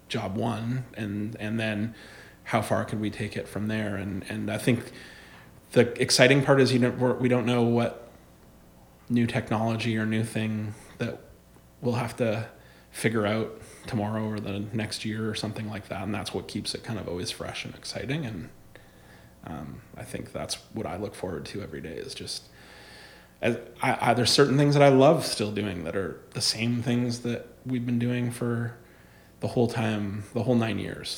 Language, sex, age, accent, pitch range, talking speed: English, male, 30-49, American, 105-120 Hz, 190 wpm